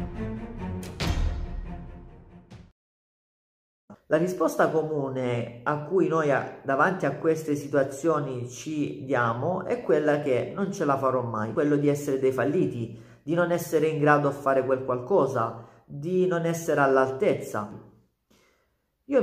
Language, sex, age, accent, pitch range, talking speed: Italian, male, 40-59, native, 125-150 Hz, 120 wpm